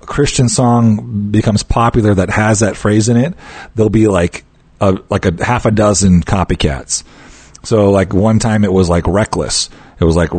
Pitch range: 90-115 Hz